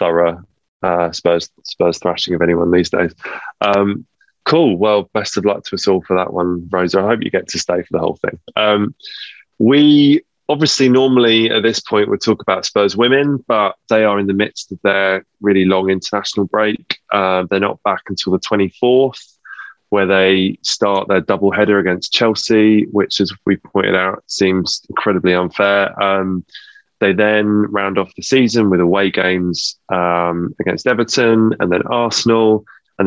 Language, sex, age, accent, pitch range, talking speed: English, male, 20-39, British, 90-110 Hz, 180 wpm